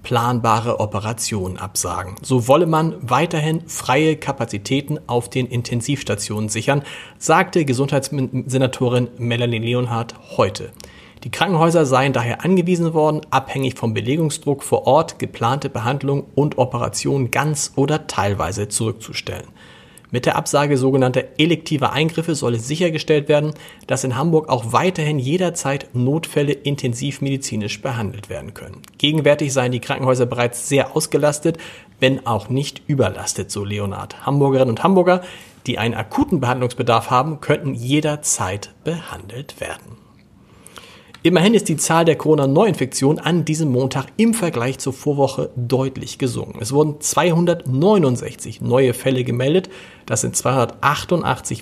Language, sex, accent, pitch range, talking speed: German, male, German, 120-155 Hz, 125 wpm